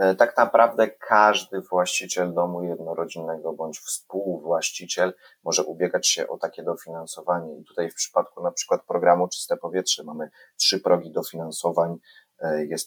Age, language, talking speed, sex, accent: 30-49, Polish, 130 wpm, male, native